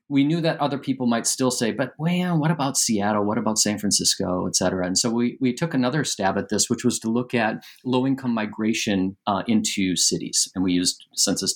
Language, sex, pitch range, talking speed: English, male, 105-145 Hz, 220 wpm